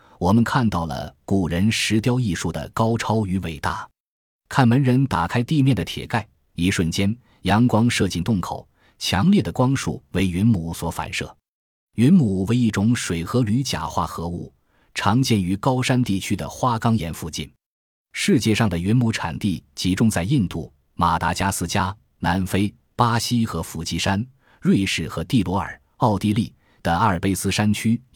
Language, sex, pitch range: Chinese, male, 85-115 Hz